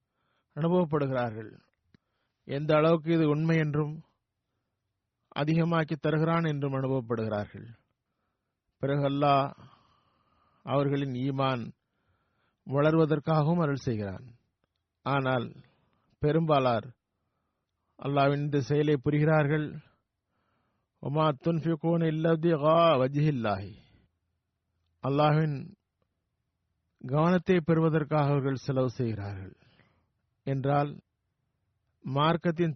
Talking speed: 60 wpm